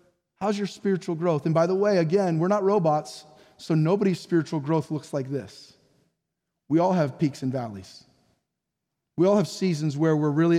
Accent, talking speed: American, 180 wpm